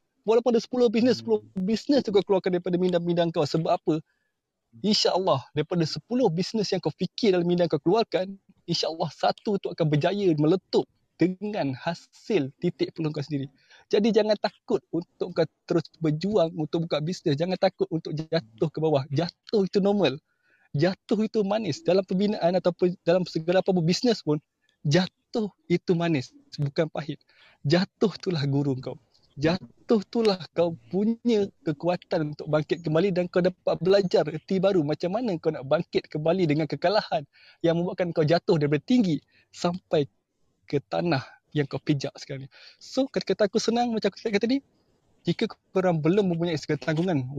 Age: 20-39